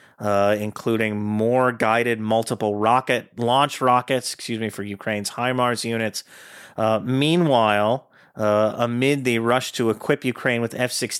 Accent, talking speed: American, 135 wpm